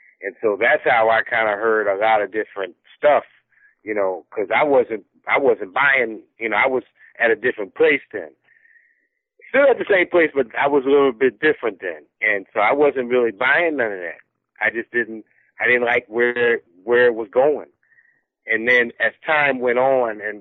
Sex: male